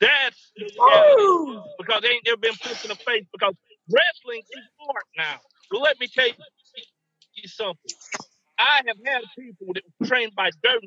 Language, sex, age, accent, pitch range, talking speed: English, male, 50-69, American, 175-250 Hz, 190 wpm